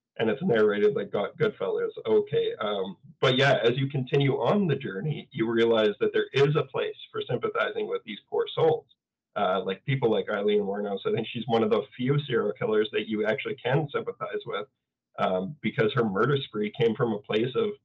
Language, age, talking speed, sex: English, 20-39, 200 wpm, male